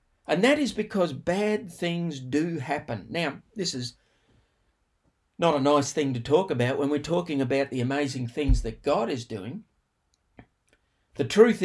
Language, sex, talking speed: English, male, 160 wpm